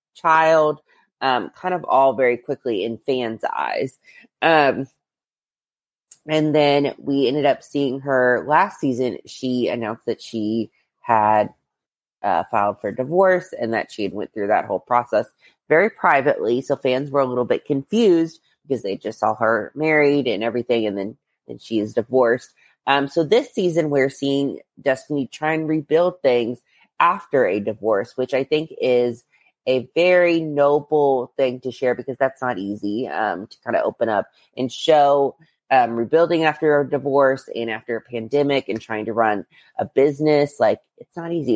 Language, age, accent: English, 20-39, American